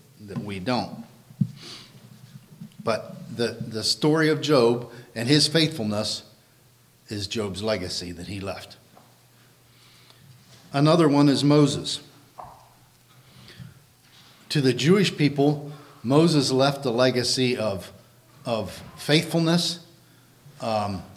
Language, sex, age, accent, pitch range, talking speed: English, male, 50-69, American, 120-145 Hz, 95 wpm